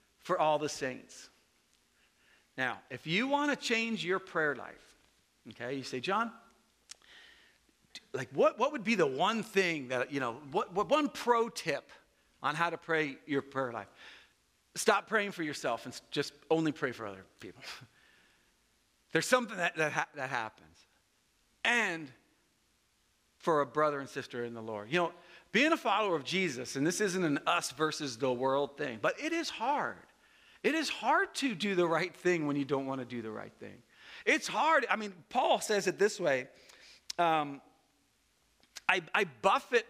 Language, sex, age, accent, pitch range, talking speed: English, male, 50-69, American, 145-235 Hz, 175 wpm